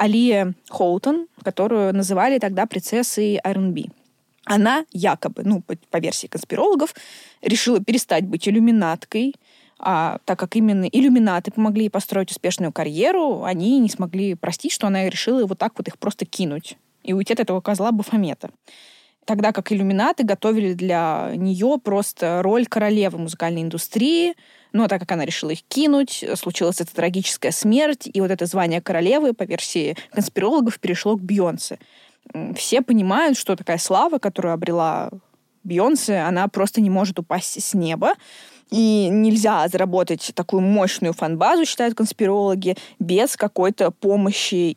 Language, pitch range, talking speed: Russian, 180-225 Hz, 140 wpm